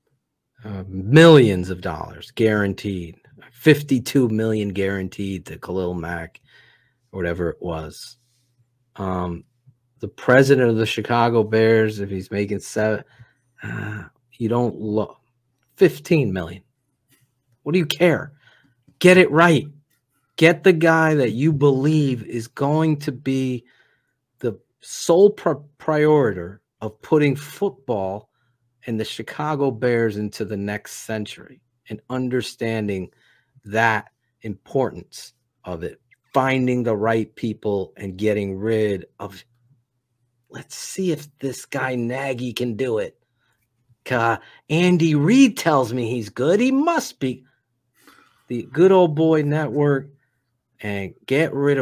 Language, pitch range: English, 110-140 Hz